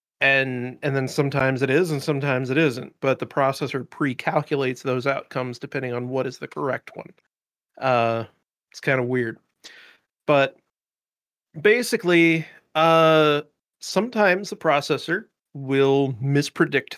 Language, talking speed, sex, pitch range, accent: English, 125 wpm, male, 135-165 Hz, American